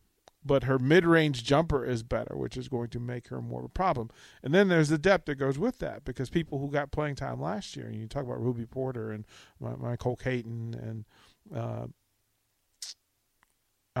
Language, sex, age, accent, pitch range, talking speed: English, male, 40-59, American, 120-150 Hz, 190 wpm